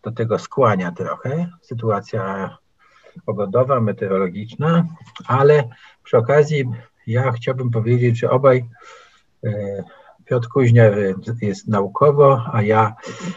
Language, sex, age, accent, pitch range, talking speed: Polish, male, 50-69, native, 110-125 Hz, 95 wpm